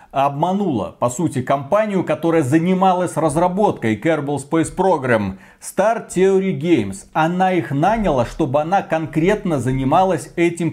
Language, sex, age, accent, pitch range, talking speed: Russian, male, 40-59, native, 140-190 Hz, 120 wpm